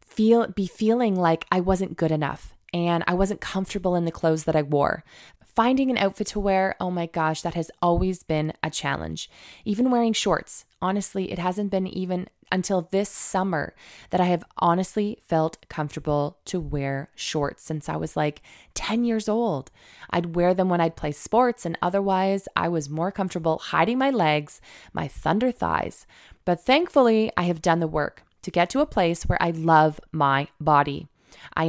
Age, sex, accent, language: 20-39, female, American, English